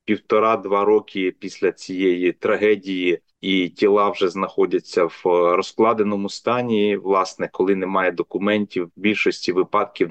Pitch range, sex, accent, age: 90-110 Hz, male, native, 30-49